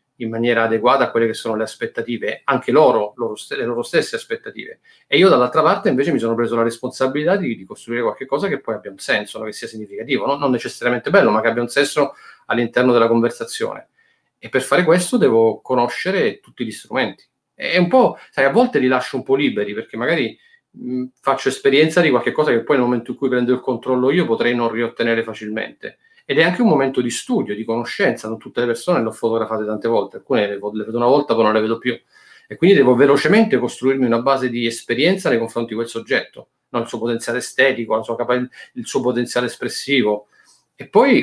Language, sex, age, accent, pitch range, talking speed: Italian, male, 40-59, native, 115-135 Hz, 210 wpm